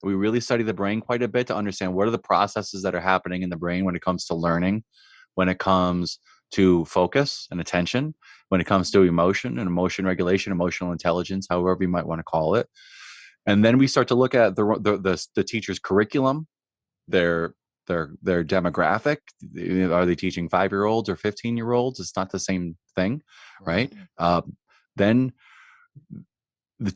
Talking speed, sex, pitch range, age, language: 180 wpm, male, 95-125 Hz, 20-39, English